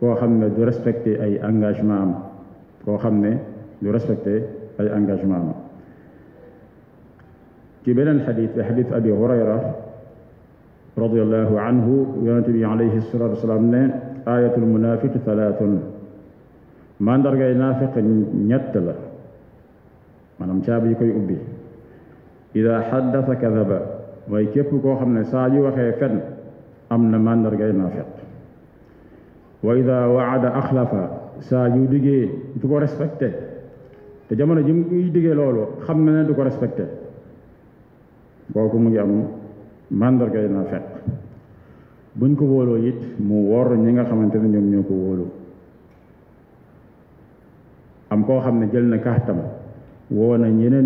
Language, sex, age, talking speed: French, male, 50-69, 55 wpm